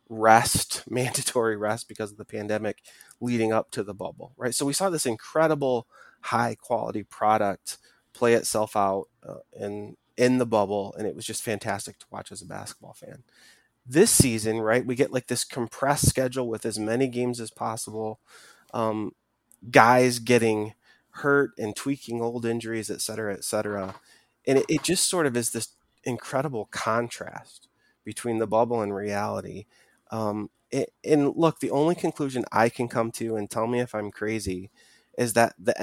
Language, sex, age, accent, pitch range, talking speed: English, male, 20-39, American, 105-125 Hz, 170 wpm